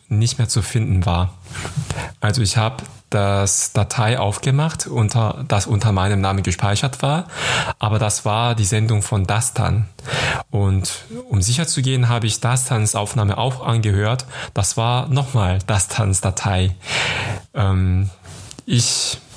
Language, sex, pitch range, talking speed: German, male, 100-125 Hz, 130 wpm